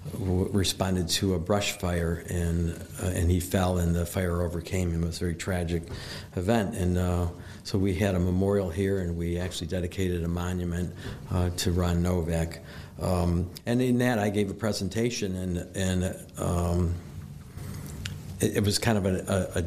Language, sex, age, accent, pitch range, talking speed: English, male, 60-79, American, 90-105 Hz, 175 wpm